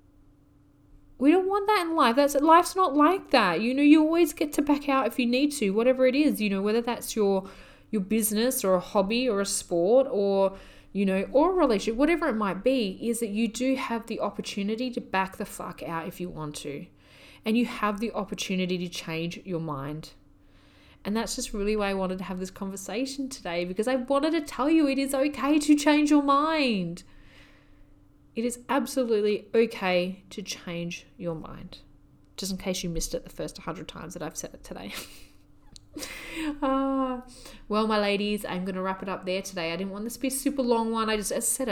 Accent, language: Australian, English